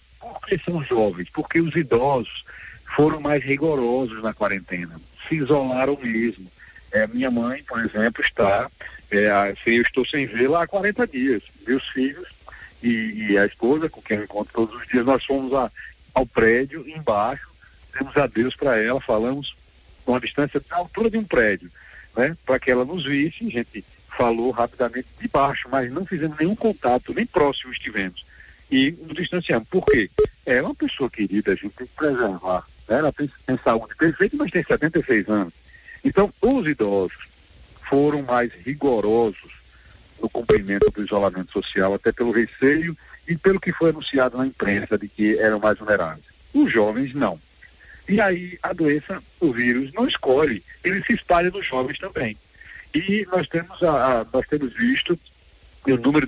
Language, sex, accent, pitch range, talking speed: Portuguese, male, Brazilian, 115-170 Hz, 170 wpm